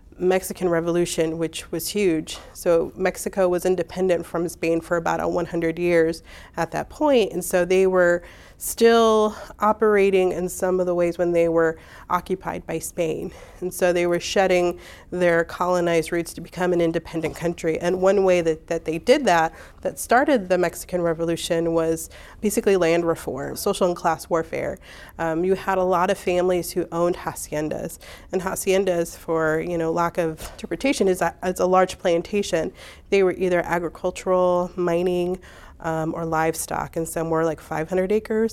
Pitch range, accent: 165-185 Hz, American